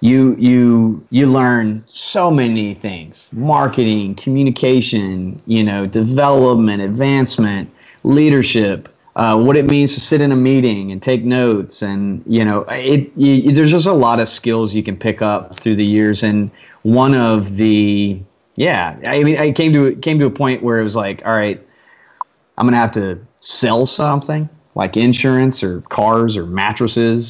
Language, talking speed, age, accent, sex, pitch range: English, 170 wpm, 30-49, American, male, 105-135 Hz